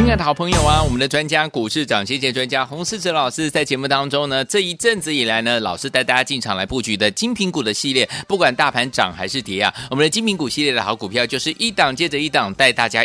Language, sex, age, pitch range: Chinese, male, 30-49, 120-175 Hz